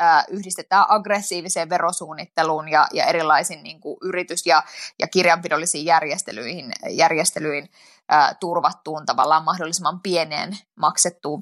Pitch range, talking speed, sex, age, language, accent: 165-205 Hz, 85 wpm, female, 20-39, Finnish, native